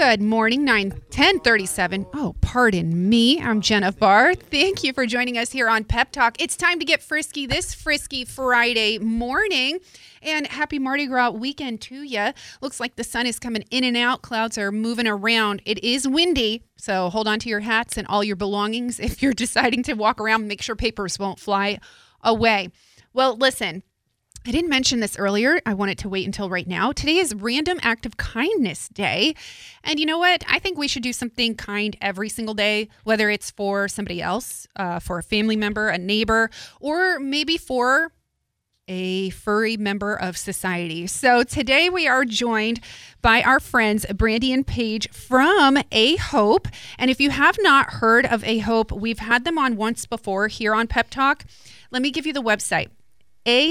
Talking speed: 190 wpm